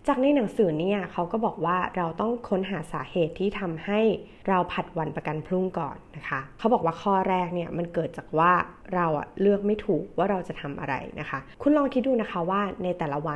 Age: 20-39